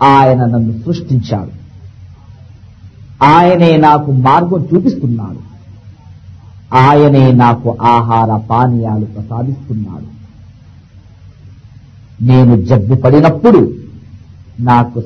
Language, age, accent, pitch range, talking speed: Telugu, 50-69, native, 100-130 Hz, 65 wpm